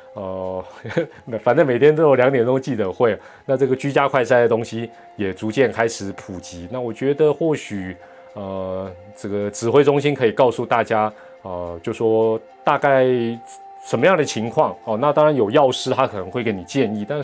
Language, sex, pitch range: Chinese, male, 100-130 Hz